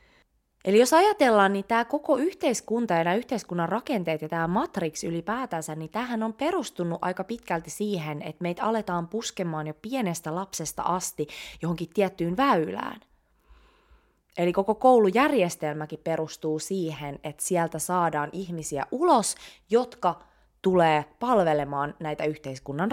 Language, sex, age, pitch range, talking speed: Finnish, female, 20-39, 165-230 Hz, 125 wpm